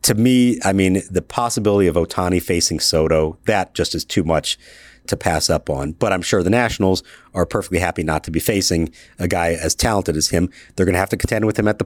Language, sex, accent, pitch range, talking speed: English, male, American, 95-120 Hz, 240 wpm